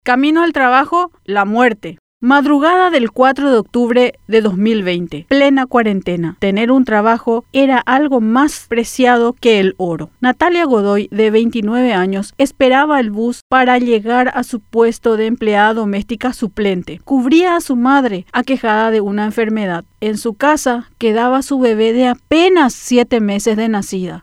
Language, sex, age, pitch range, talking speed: Spanish, female, 40-59, 215-260 Hz, 150 wpm